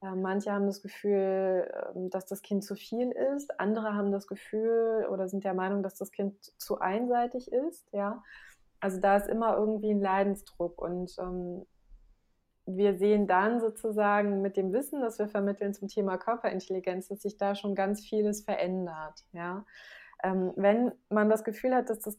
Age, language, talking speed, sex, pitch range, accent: 20-39, German, 165 wpm, female, 195-235 Hz, German